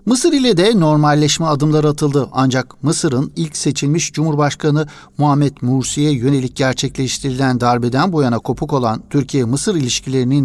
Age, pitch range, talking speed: 60-79, 125-150 Hz, 125 wpm